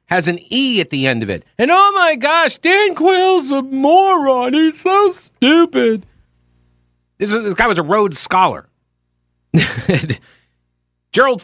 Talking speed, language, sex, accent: 145 wpm, English, male, American